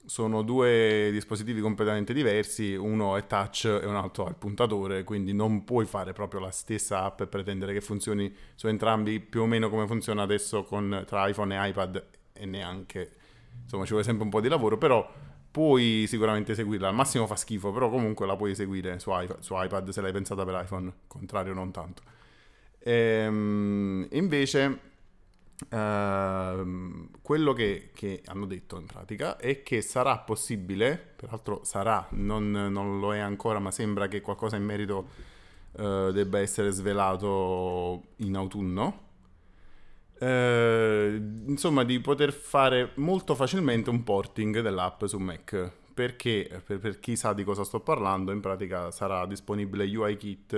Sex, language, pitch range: male, Italian, 95-110 Hz